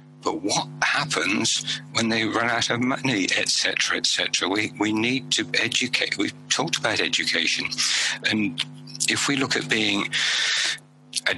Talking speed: 155 wpm